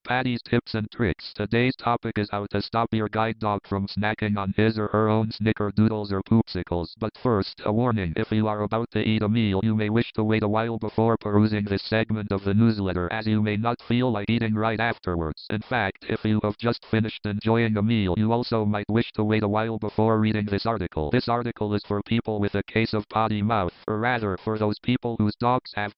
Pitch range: 105-115 Hz